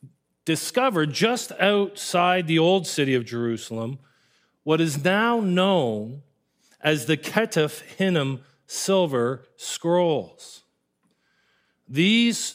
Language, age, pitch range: English, 40-59, 140-185 Hz